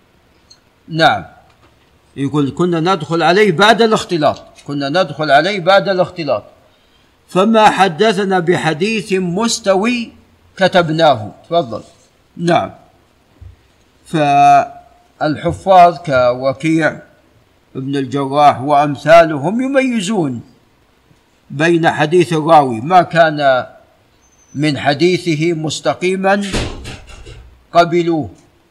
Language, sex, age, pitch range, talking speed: Arabic, male, 50-69, 150-185 Hz, 70 wpm